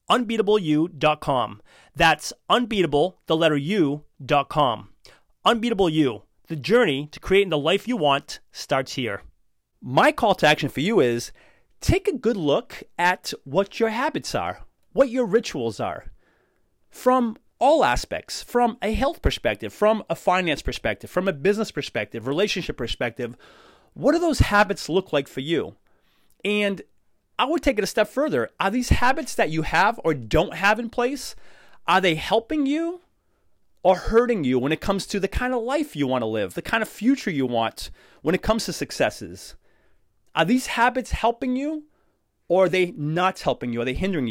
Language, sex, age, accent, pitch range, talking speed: English, male, 30-49, American, 150-235 Hz, 170 wpm